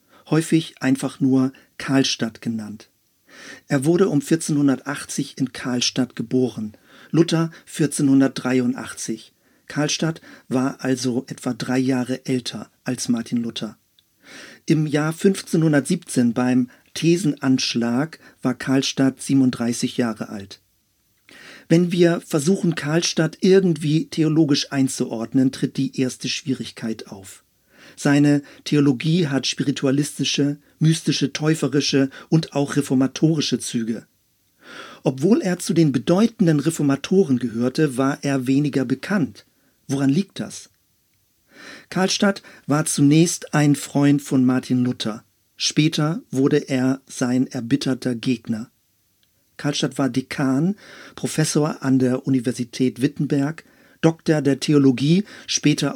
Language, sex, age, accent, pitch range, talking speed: German, male, 50-69, German, 130-155 Hz, 105 wpm